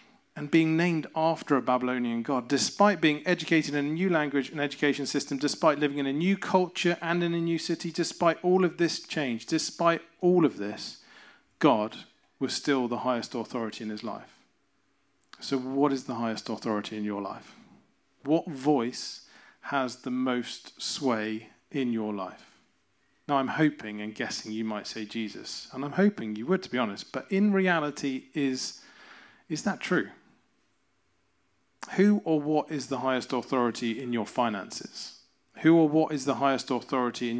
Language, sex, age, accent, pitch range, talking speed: English, male, 40-59, British, 120-160 Hz, 170 wpm